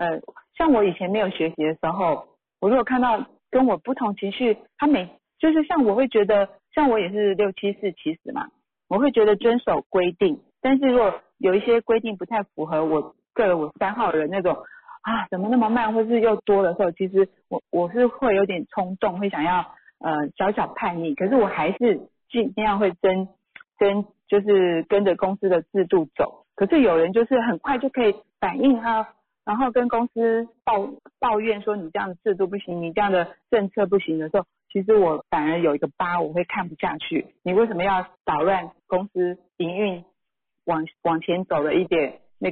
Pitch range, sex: 180-230 Hz, female